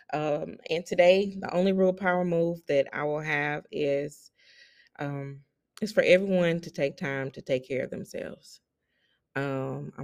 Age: 20-39